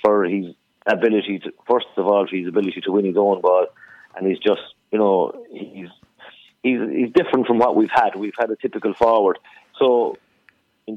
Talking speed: 190 wpm